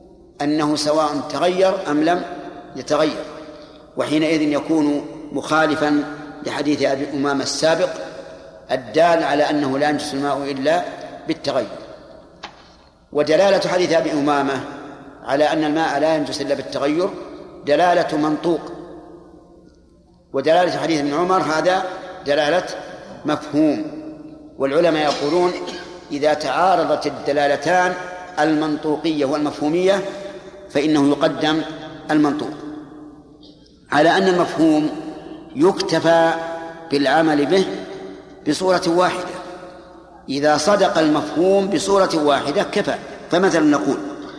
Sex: male